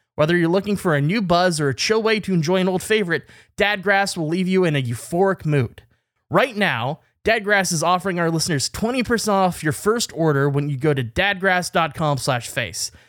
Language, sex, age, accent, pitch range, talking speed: English, male, 20-39, American, 115-165 Hz, 195 wpm